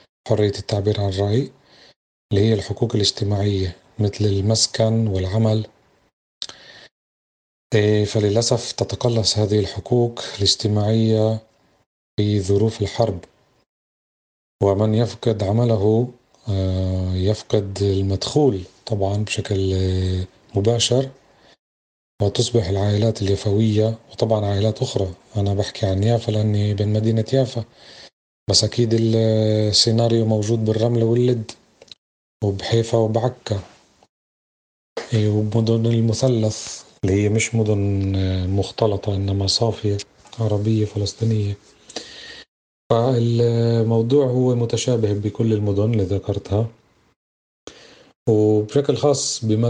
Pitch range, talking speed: 100-115 Hz, 85 wpm